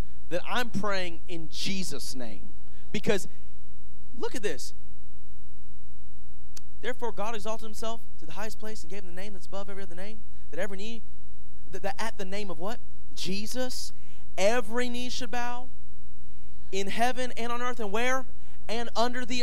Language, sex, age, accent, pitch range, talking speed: English, male, 30-49, American, 160-230 Hz, 165 wpm